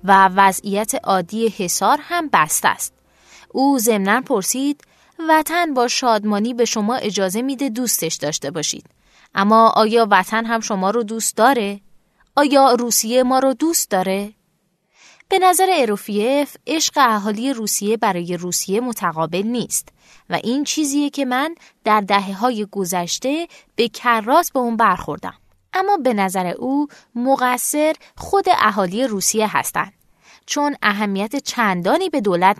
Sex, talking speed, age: female, 135 wpm, 20-39